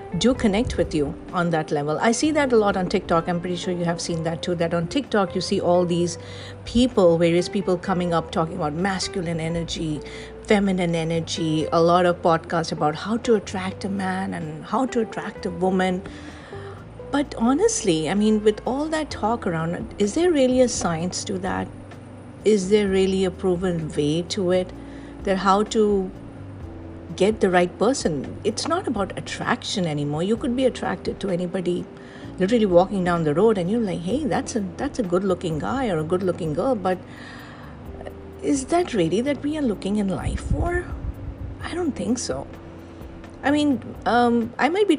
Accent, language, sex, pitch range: Indian, English, female, 165-220 Hz